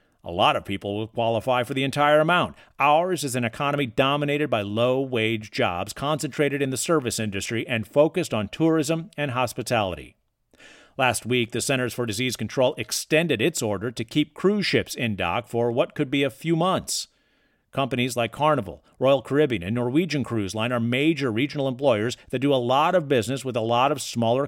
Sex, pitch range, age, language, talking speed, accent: male, 115-150 Hz, 50-69, English, 185 wpm, American